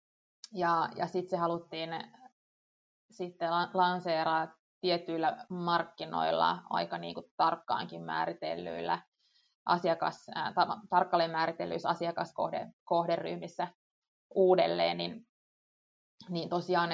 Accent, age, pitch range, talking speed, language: native, 20-39, 165-185 Hz, 80 wpm, Finnish